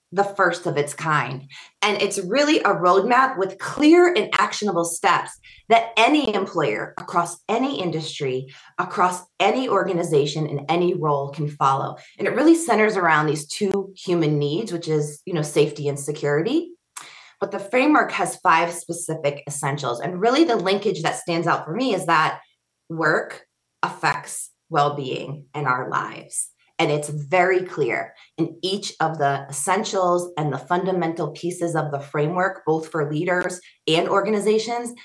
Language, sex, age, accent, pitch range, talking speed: English, female, 20-39, American, 150-185 Hz, 155 wpm